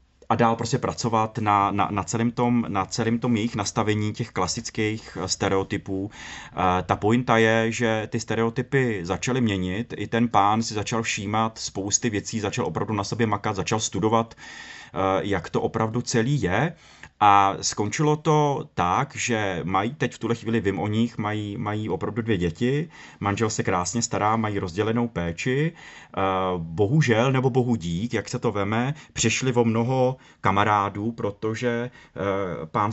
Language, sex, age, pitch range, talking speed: Czech, male, 30-49, 100-115 Hz, 150 wpm